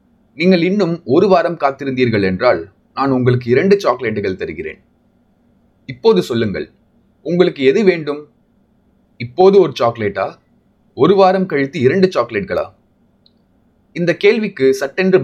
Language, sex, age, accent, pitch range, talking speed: Tamil, male, 30-49, native, 120-185 Hz, 105 wpm